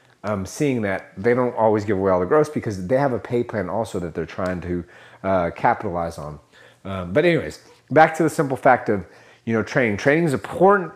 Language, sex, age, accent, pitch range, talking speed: English, male, 30-49, American, 110-155 Hz, 220 wpm